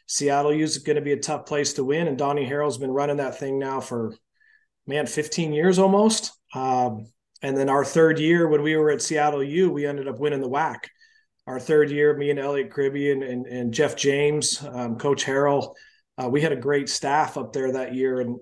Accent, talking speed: American, 225 wpm